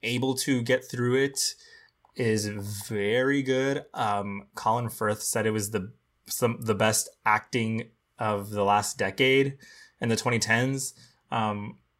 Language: English